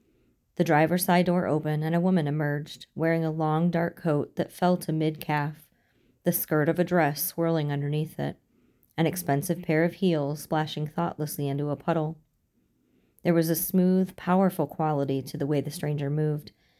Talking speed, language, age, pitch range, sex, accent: 170 wpm, English, 30-49, 150-170 Hz, female, American